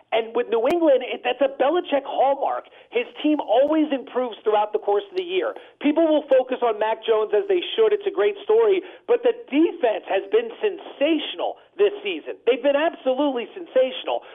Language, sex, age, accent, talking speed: English, male, 40-59, American, 180 wpm